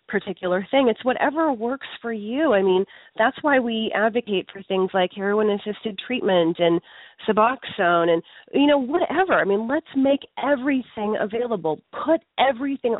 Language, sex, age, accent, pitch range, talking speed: English, female, 30-49, American, 185-260 Hz, 150 wpm